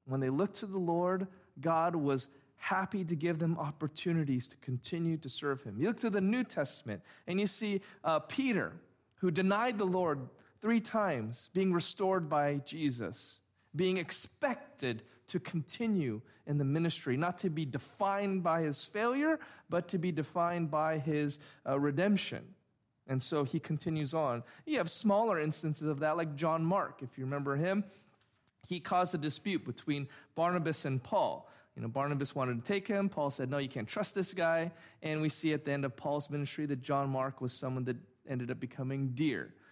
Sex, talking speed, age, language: male, 185 wpm, 40-59, English